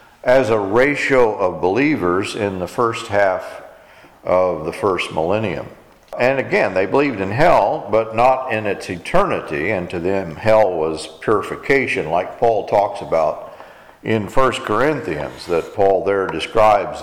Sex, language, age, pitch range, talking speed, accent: male, English, 50-69, 105-150 Hz, 145 wpm, American